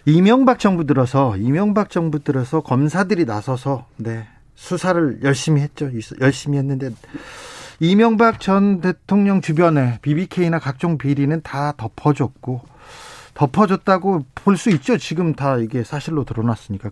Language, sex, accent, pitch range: Korean, male, native, 130-175 Hz